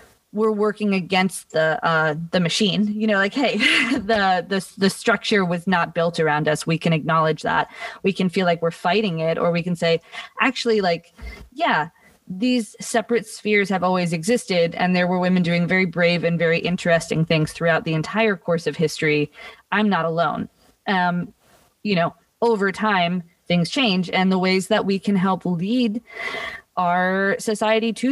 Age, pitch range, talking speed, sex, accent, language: 20-39, 170-220 Hz, 175 wpm, female, American, English